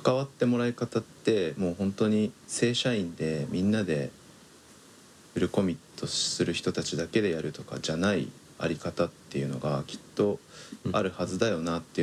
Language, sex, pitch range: Japanese, male, 85-105 Hz